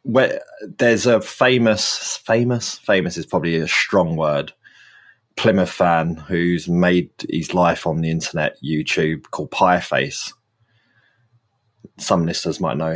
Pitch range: 80-105 Hz